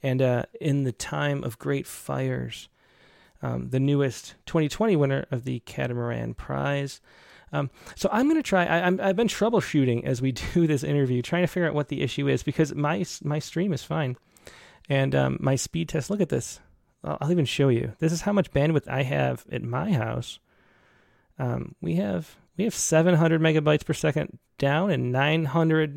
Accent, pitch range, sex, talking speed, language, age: American, 130-165 Hz, male, 185 wpm, English, 30-49